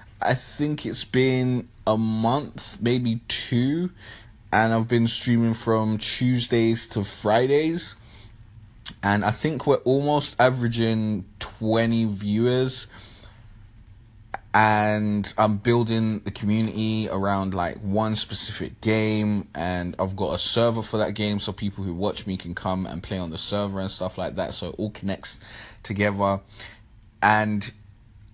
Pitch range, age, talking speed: 100-115 Hz, 20-39, 135 wpm